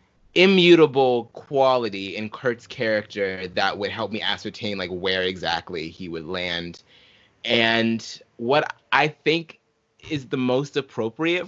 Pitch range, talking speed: 105-145 Hz, 125 wpm